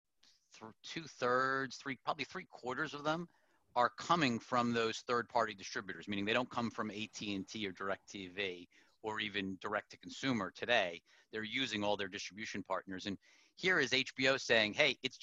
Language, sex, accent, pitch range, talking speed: English, male, American, 105-130 Hz, 145 wpm